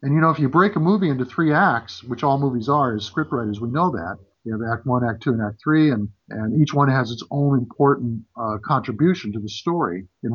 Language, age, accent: English, 50-69, American